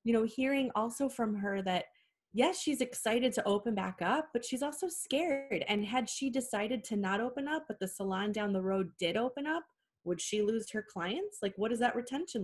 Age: 20-39